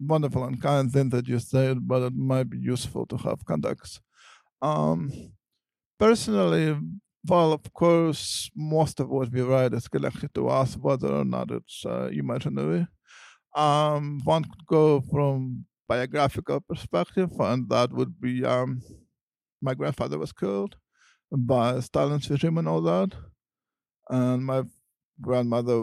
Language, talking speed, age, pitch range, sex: English, 140 wpm, 50-69, 120-150 Hz, male